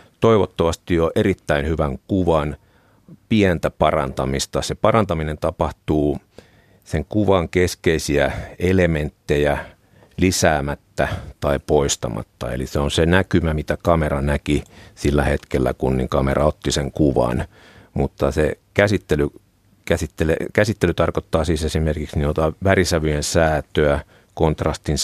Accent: native